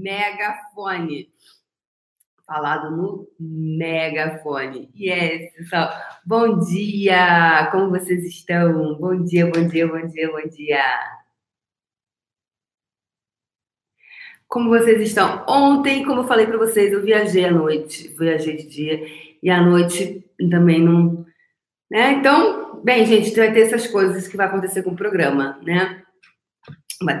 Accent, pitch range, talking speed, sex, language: Brazilian, 165-195 Hz, 125 wpm, female, Portuguese